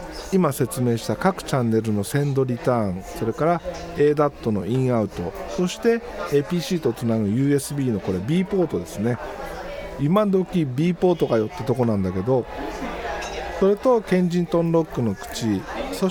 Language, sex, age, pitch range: Japanese, male, 50-69, 115-185 Hz